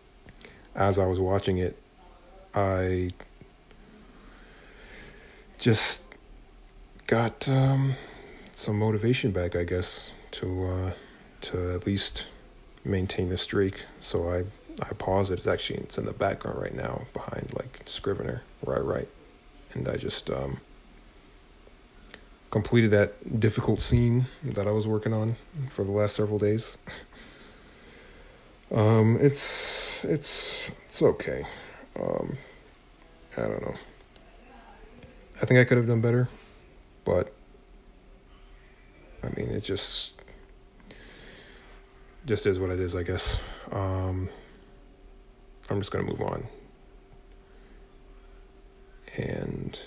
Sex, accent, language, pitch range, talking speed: male, American, English, 90-120 Hz, 115 wpm